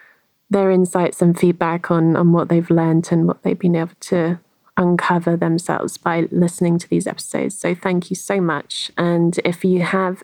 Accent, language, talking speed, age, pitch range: British, English, 180 wpm, 20-39, 170-190 Hz